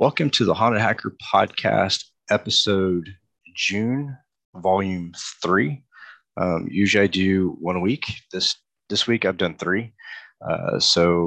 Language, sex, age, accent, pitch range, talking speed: English, male, 30-49, American, 85-105 Hz, 135 wpm